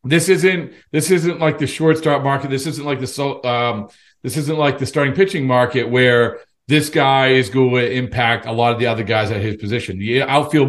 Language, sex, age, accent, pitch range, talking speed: English, male, 50-69, American, 120-165 Hz, 225 wpm